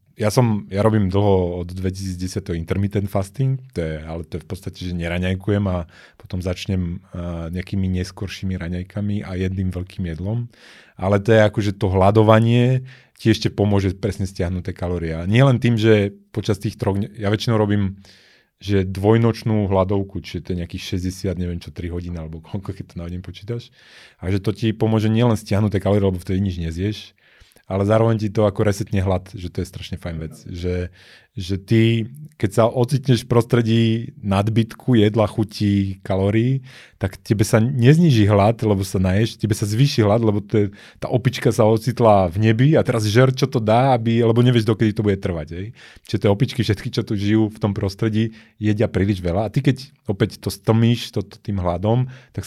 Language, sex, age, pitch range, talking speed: Slovak, male, 30-49, 95-115 Hz, 190 wpm